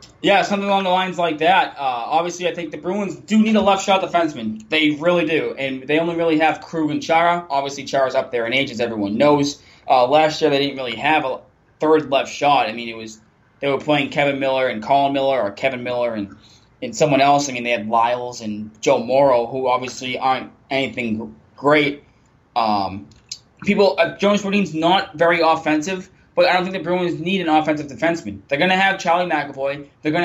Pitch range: 135-170 Hz